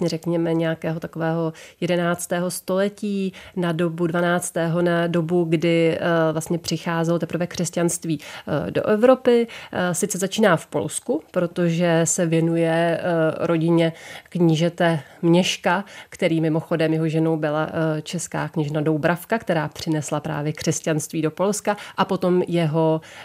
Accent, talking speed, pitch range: native, 115 wpm, 155-175 Hz